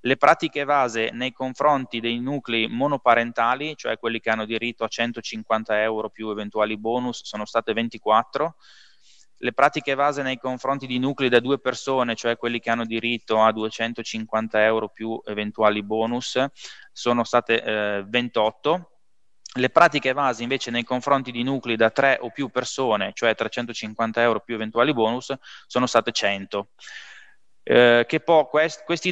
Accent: native